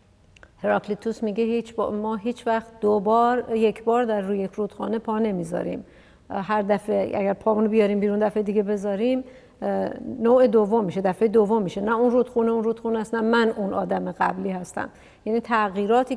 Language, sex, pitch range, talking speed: Persian, female, 215-265 Hz, 170 wpm